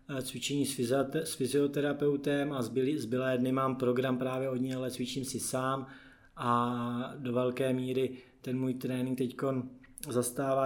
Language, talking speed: Czech, 135 wpm